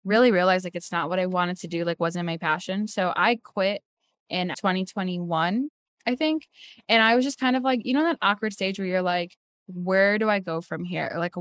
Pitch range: 175-210 Hz